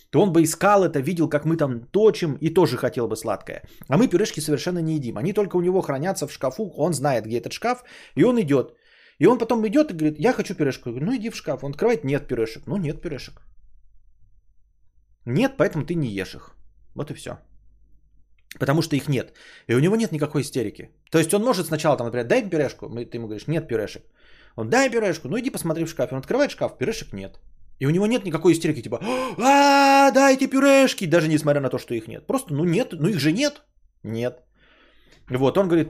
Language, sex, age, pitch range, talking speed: Bulgarian, male, 20-39, 120-200 Hz, 220 wpm